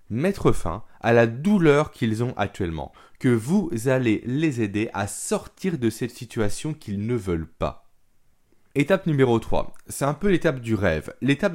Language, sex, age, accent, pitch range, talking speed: French, male, 20-39, French, 105-155 Hz, 165 wpm